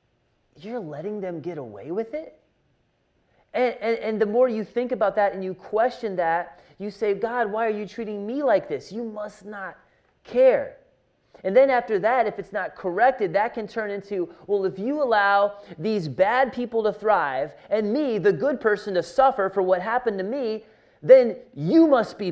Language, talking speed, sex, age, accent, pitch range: English, 190 wpm, male, 30-49, American, 175-225 Hz